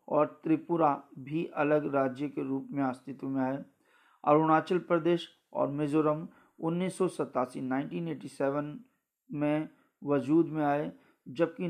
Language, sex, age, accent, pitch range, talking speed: Hindi, male, 40-59, native, 140-160 Hz, 115 wpm